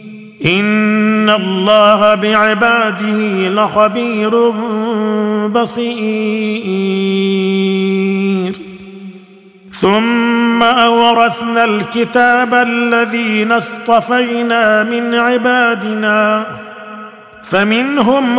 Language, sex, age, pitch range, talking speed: Arabic, male, 50-69, 210-235 Hz, 40 wpm